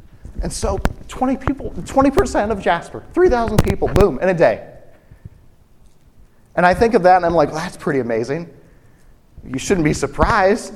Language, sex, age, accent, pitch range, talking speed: English, male, 30-49, American, 135-195 Hz, 175 wpm